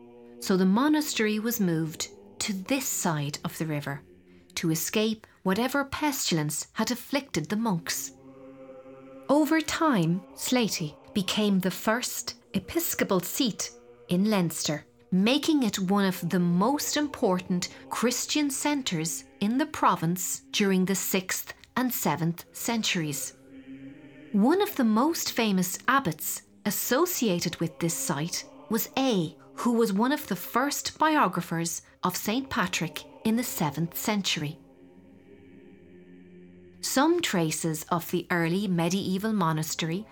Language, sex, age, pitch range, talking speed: English, female, 40-59, 145-230 Hz, 120 wpm